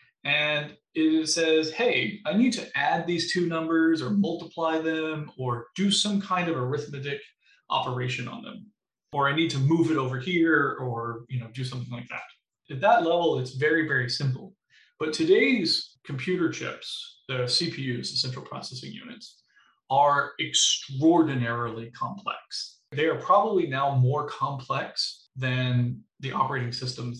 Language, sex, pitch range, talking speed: English, male, 125-165 Hz, 150 wpm